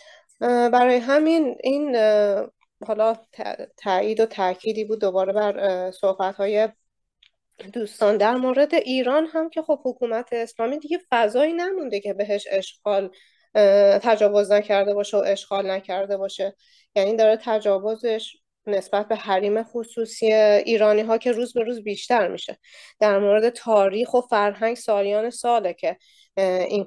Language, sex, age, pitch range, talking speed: Persian, female, 30-49, 205-245 Hz, 125 wpm